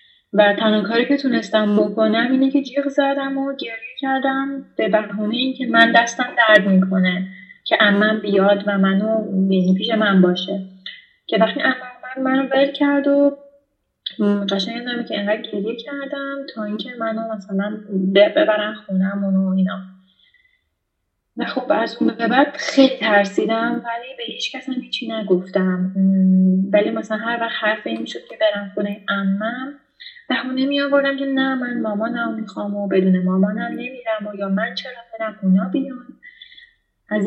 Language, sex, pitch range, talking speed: Persian, female, 195-260 Hz, 155 wpm